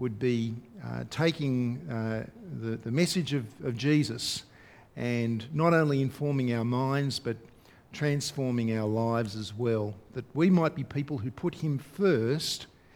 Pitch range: 120-160 Hz